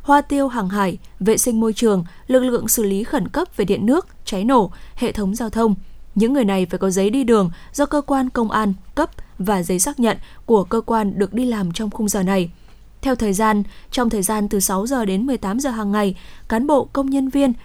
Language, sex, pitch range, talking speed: Vietnamese, female, 200-245 Hz, 240 wpm